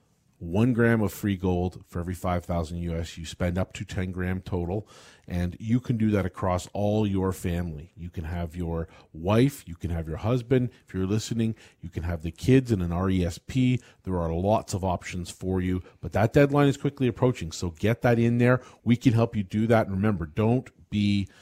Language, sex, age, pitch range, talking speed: English, male, 40-59, 90-110 Hz, 205 wpm